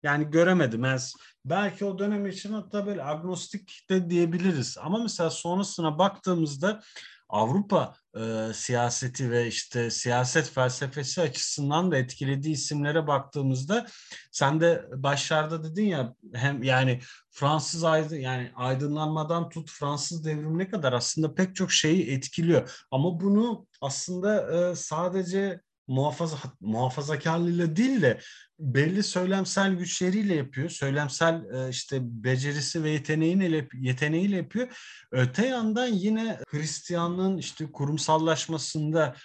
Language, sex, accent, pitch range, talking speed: Turkish, male, native, 140-180 Hz, 115 wpm